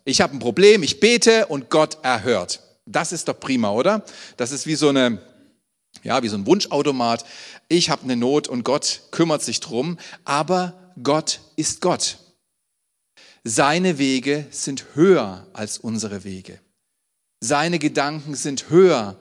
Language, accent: German, German